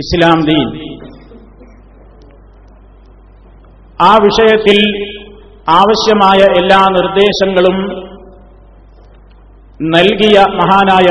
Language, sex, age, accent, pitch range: Malayalam, male, 50-69, native, 165-195 Hz